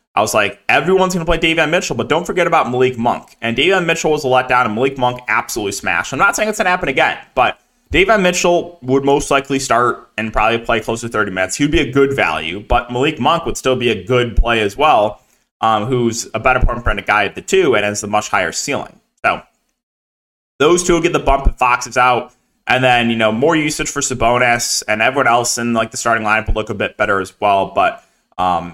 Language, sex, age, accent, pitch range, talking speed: English, male, 20-39, American, 120-160 Hz, 245 wpm